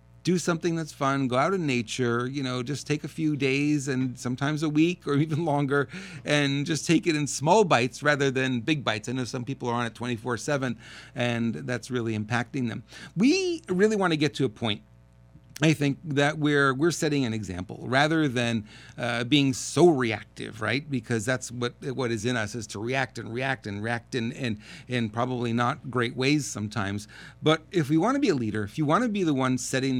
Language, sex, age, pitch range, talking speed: English, male, 40-59, 115-155 Hz, 220 wpm